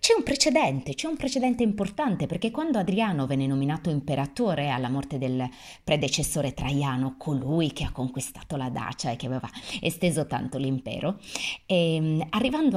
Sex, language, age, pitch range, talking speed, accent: female, Italian, 30-49, 140-195 Hz, 145 wpm, native